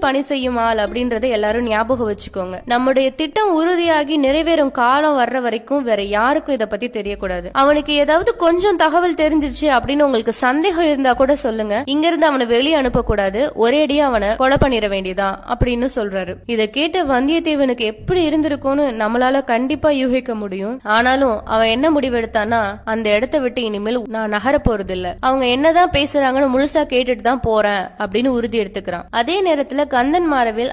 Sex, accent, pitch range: female, native, 220-295 Hz